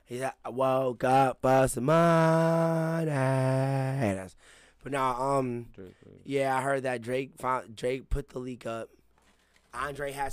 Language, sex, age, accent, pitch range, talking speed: English, male, 20-39, American, 90-135 Hz, 115 wpm